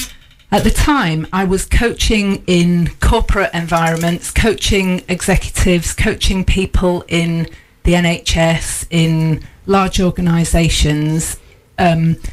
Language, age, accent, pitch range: English, 40-59, British, 160-185 Hz